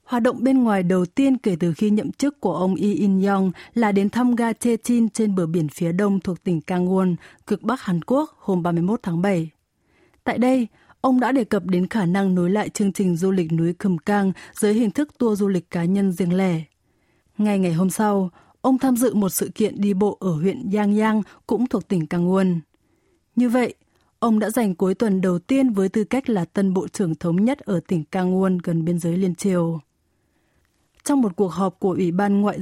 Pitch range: 180-225 Hz